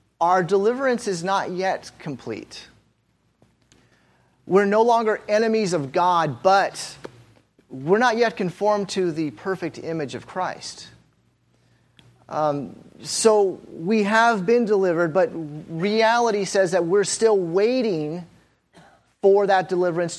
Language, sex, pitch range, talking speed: English, male, 155-205 Hz, 115 wpm